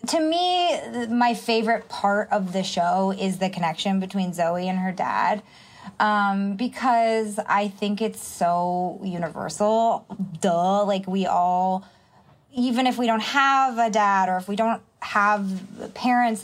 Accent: American